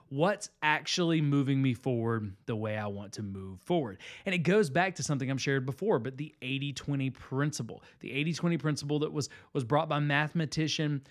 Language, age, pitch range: English, 30-49, 130-170 Hz